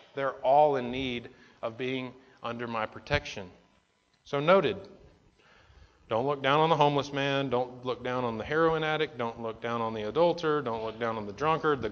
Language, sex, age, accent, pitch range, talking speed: English, male, 30-49, American, 115-155 Hz, 190 wpm